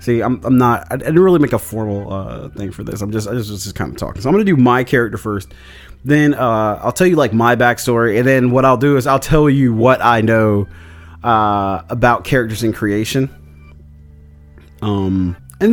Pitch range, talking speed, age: 100-145 Hz, 215 wpm, 30-49